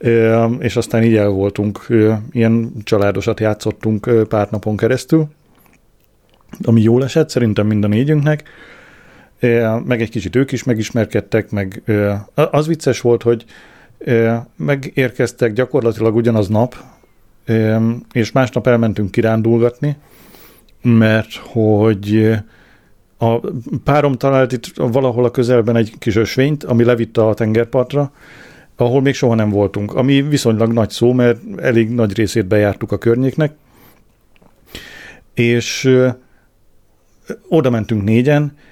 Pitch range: 110-130 Hz